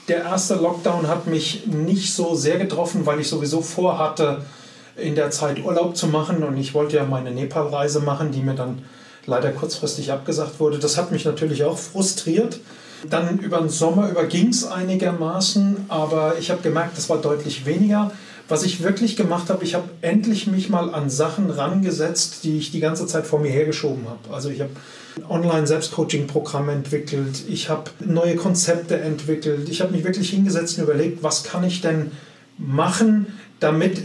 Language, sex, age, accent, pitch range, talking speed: German, male, 30-49, German, 150-180 Hz, 175 wpm